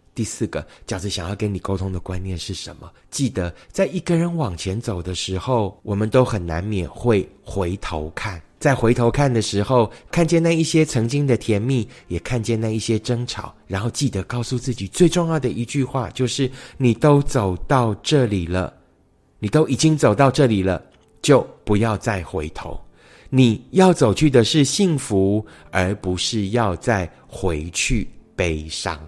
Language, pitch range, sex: Chinese, 95-140 Hz, male